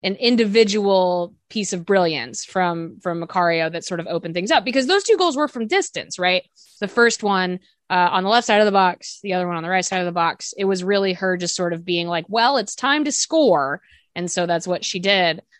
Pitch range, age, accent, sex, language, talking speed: 170-215 Hz, 20-39, American, female, English, 240 wpm